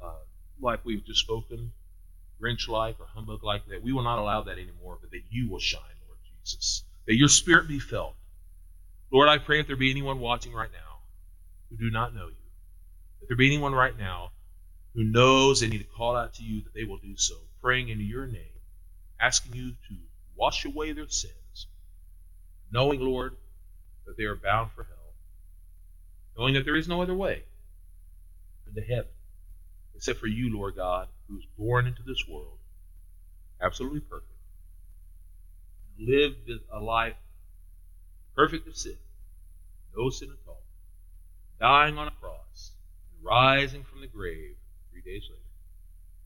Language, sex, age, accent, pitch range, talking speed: English, male, 40-59, American, 75-115 Hz, 160 wpm